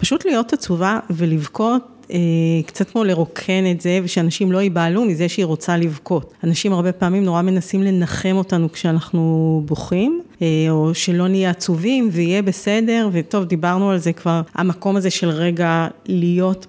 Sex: female